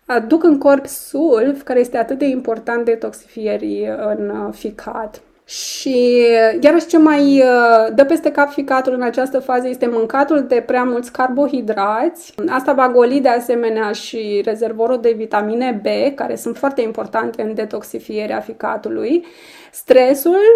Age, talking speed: 20-39, 135 wpm